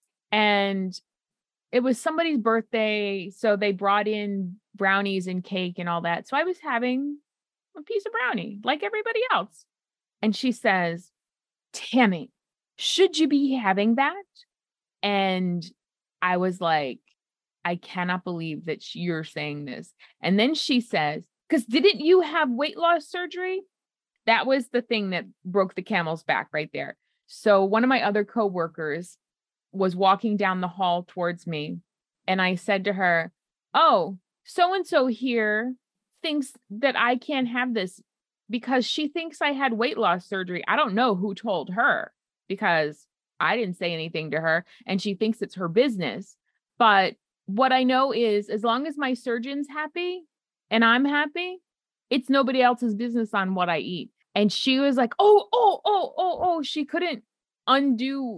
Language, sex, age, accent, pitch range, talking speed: English, female, 30-49, American, 190-275 Hz, 165 wpm